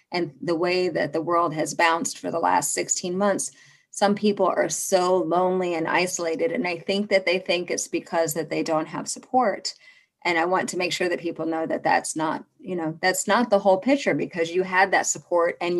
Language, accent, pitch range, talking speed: English, American, 160-185 Hz, 220 wpm